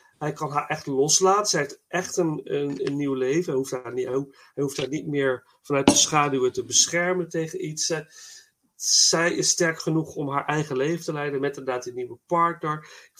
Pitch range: 135-180 Hz